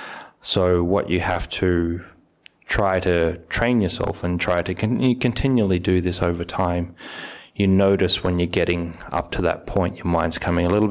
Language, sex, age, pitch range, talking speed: English, male, 20-39, 85-100 Hz, 175 wpm